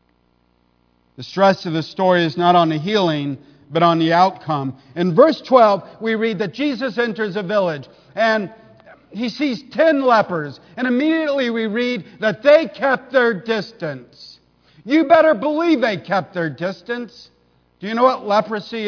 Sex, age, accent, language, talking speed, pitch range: male, 50-69, American, English, 160 wpm, 155-205 Hz